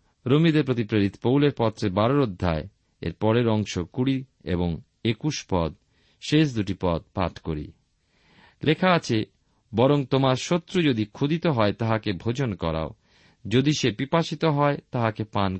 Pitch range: 100-150 Hz